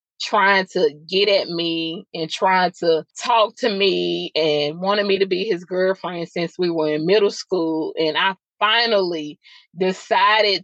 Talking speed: 160 wpm